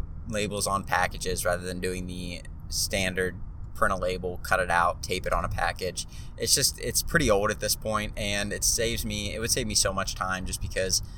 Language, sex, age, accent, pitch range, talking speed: English, male, 20-39, American, 90-105 Hz, 215 wpm